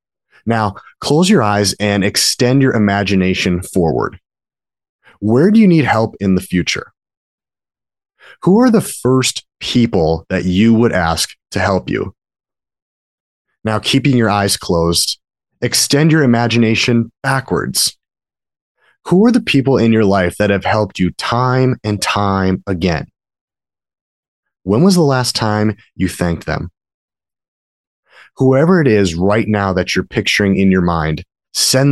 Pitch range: 95-125 Hz